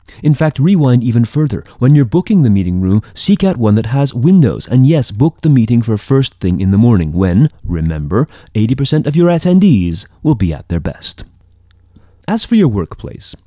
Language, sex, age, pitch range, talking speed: English, male, 30-49, 90-130 Hz, 190 wpm